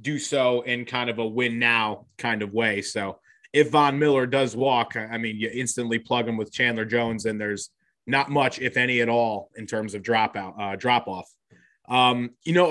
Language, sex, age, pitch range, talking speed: English, male, 30-49, 115-135 Hz, 205 wpm